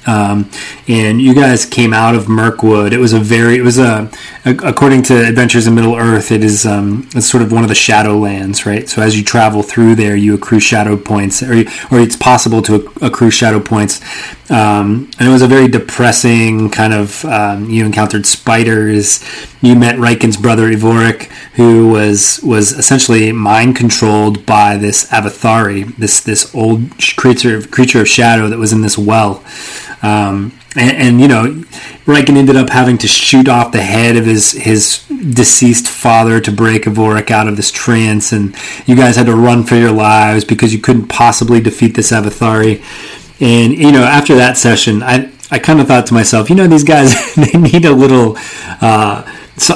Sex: male